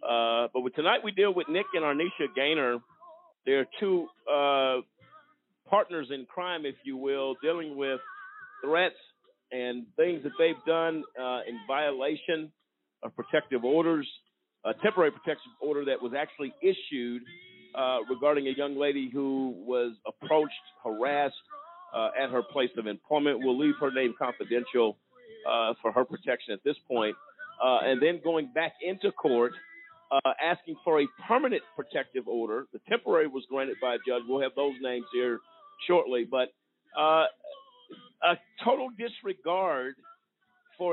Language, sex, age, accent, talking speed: English, male, 50-69, American, 150 wpm